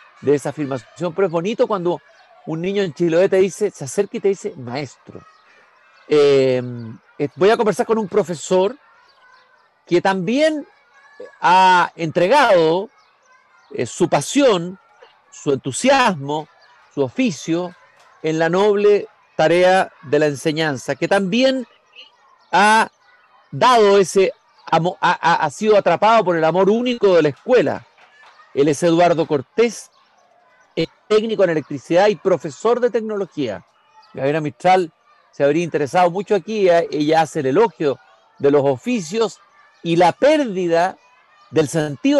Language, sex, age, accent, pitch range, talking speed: Spanish, male, 50-69, Mexican, 160-220 Hz, 130 wpm